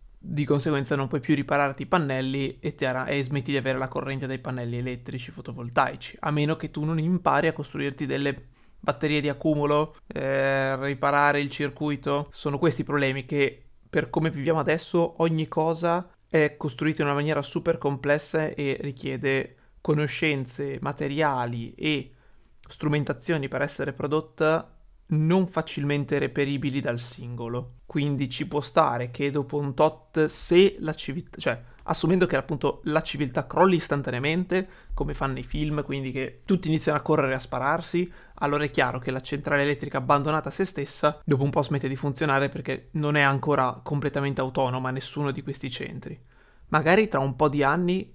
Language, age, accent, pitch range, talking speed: Italian, 30-49, native, 135-155 Hz, 165 wpm